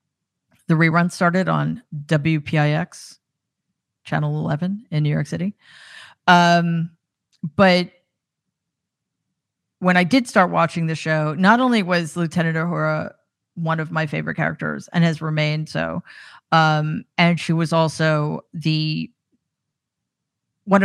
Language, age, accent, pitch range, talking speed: English, 40-59, American, 155-175 Hz, 120 wpm